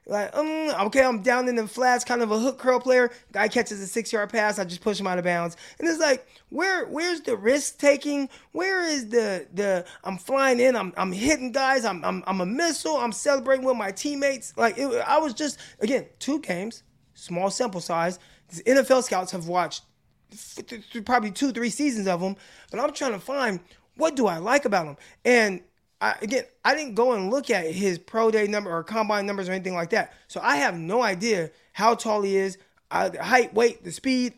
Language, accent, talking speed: English, American, 210 wpm